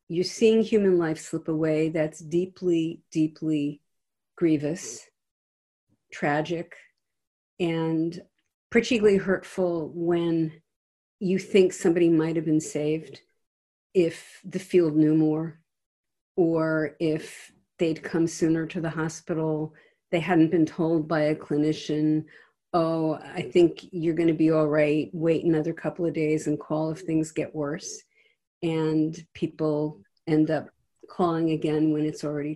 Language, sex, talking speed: English, female, 130 wpm